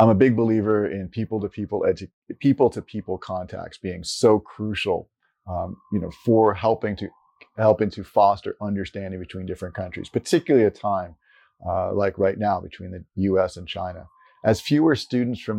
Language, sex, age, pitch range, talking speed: English, male, 40-59, 95-115 Hz, 160 wpm